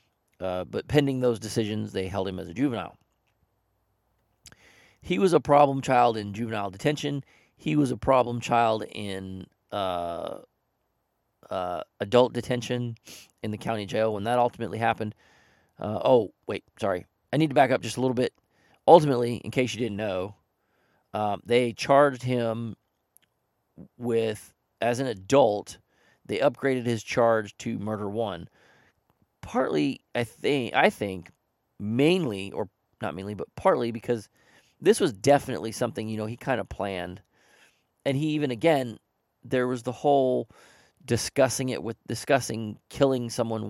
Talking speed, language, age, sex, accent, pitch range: 145 wpm, English, 40-59, male, American, 105-125 Hz